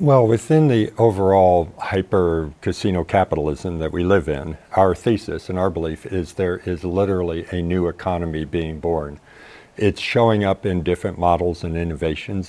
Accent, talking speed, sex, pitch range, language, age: American, 155 wpm, male, 85-100 Hz, English, 50-69